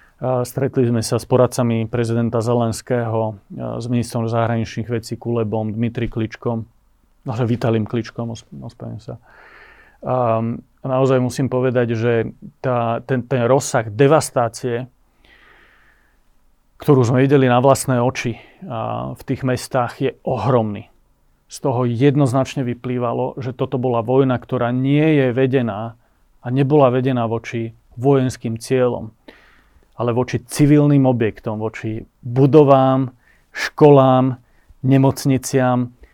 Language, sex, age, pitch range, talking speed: Slovak, male, 30-49, 115-135 Hz, 115 wpm